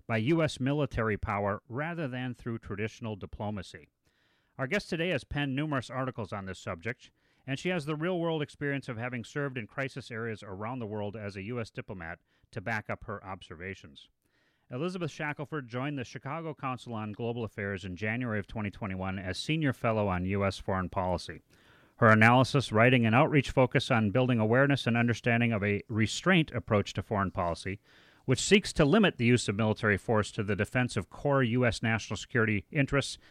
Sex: male